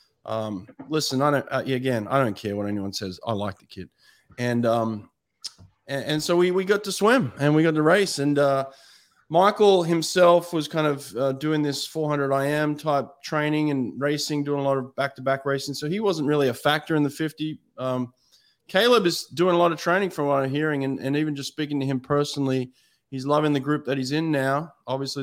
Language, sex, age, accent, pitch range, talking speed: English, male, 20-39, Australian, 130-155 Hz, 220 wpm